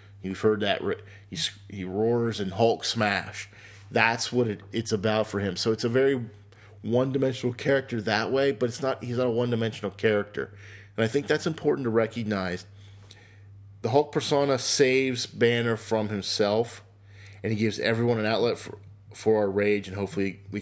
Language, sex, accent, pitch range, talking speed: English, male, American, 100-120 Hz, 170 wpm